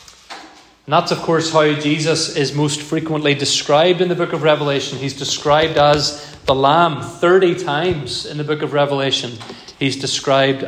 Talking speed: 165 wpm